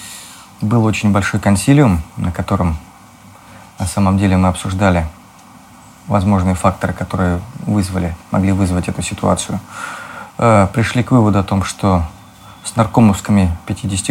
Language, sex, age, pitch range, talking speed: Russian, male, 30-49, 95-110 Hz, 115 wpm